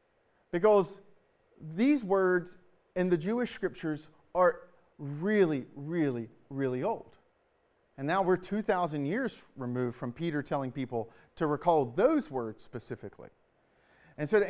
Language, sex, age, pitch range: English, male, 40-59, 150-200 Hz